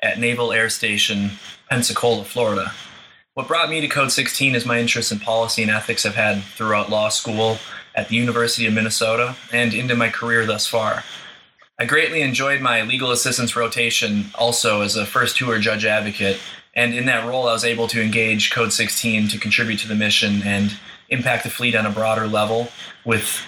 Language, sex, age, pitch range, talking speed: English, male, 20-39, 110-125 Hz, 190 wpm